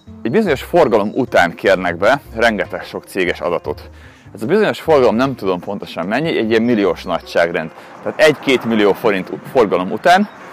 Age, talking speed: 30-49, 160 wpm